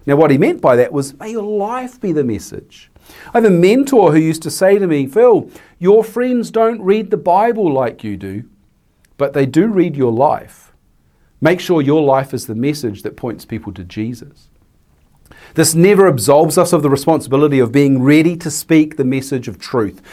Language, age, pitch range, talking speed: English, 40-59, 125-175 Hz, 200 wpm